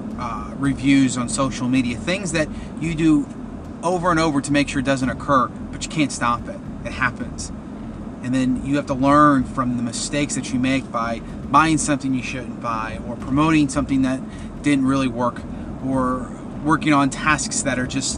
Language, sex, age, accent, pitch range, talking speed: English, male, 30-49, American, 130-155 Hz, 190 wpm